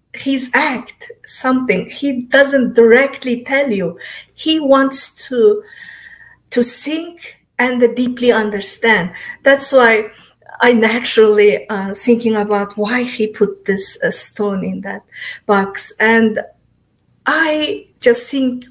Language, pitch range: English, 225-275 Hz